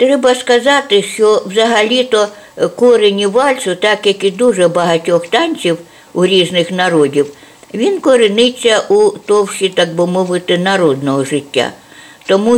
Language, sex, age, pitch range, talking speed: Ukrainian, female, 60-79, 160-215 Hz, 115 wpm